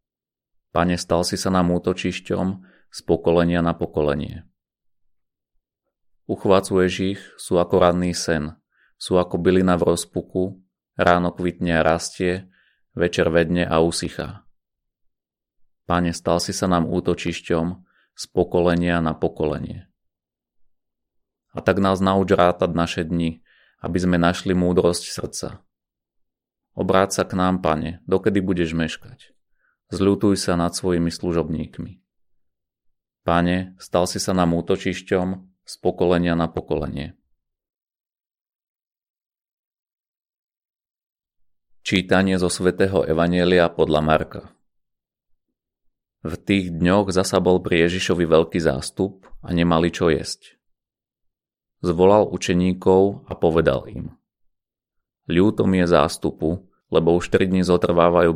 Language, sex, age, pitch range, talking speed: Slovak, male, 30-49, 85-95 Hz, 105 wpm